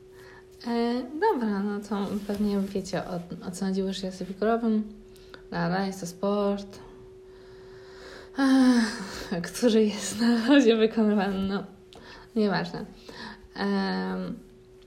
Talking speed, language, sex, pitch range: 95 wpm, Polish, female, 185-215 Hz